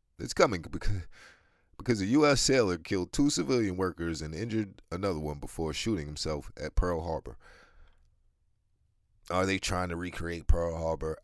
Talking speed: 150 wpm